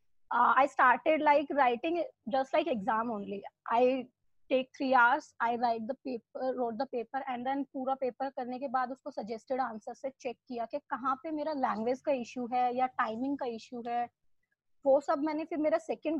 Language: English